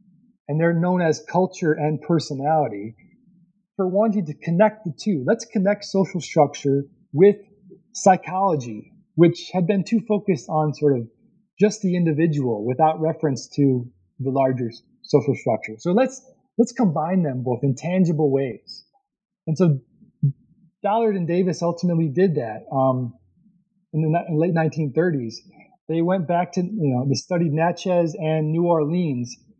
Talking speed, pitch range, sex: 145 wpm, 150-200 Hz, male